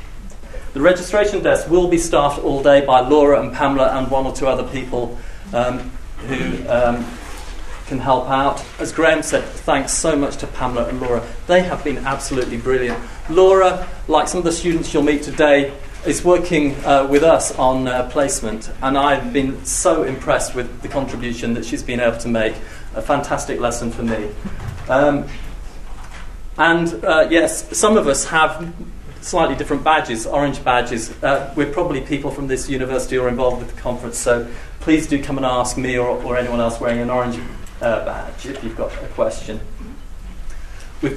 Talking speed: 180 wpm